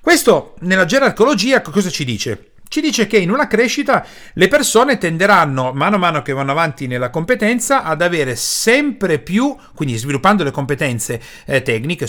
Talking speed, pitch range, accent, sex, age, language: 160 wpm, 130-210 Hz, native, male, 40-59, Italian